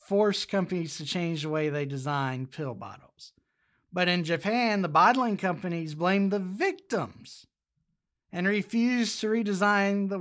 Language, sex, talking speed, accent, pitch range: English, male, 140 wpm, American, 165-220 Hz